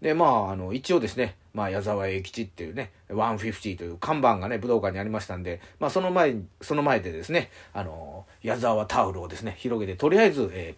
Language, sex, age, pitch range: Japanese, male, 30-49, 95-135 Hz